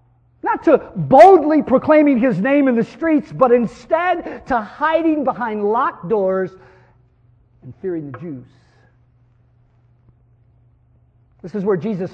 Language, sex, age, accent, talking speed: English, male, 50-69, American, 120 wpm